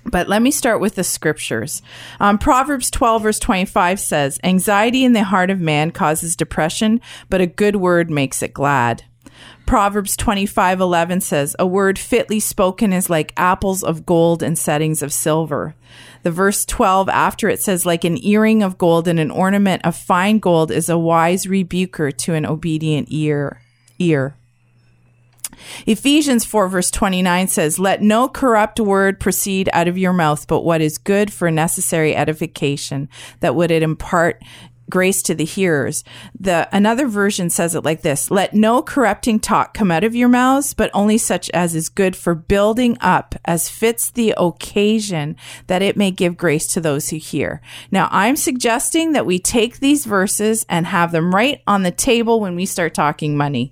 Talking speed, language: 180 wpm, English